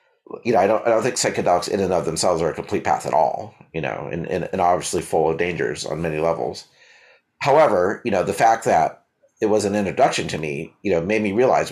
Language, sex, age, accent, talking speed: English, male, 40-59, American, 240 wpm